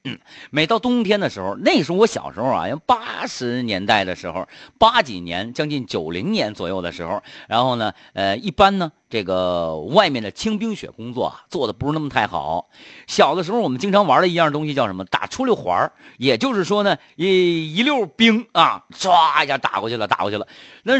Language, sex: Chinese, male